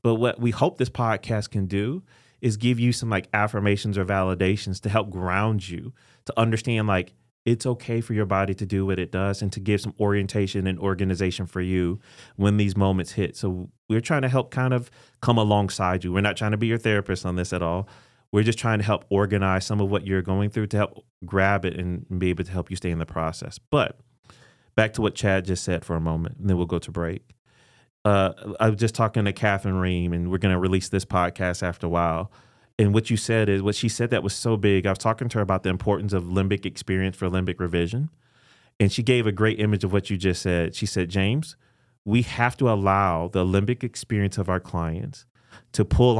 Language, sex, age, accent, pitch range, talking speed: English, male, 30-49, American, 95-115 Hz, 235 wpm